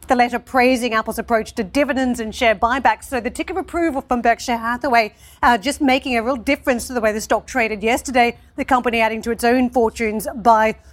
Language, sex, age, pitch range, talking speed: English, female, 40-59, 220-255 Hz, 210 wpm